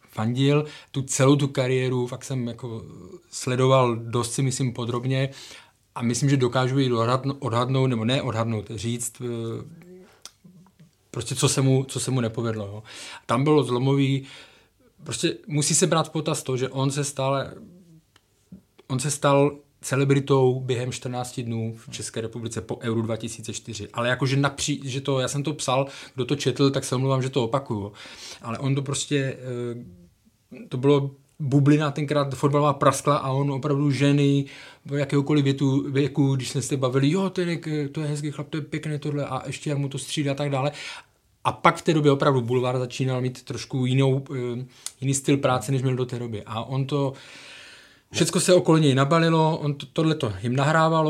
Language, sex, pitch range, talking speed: Czech, male, 125-145 Hz, 175 wpm